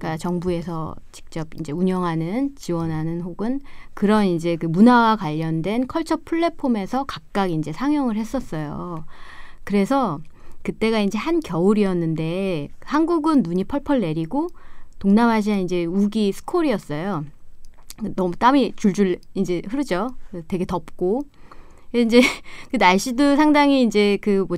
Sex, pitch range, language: female, 175-270 Hz, Korean